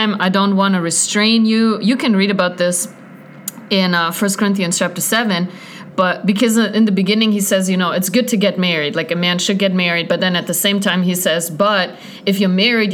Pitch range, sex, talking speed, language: 185-235 Hz, female, 225 wpm, English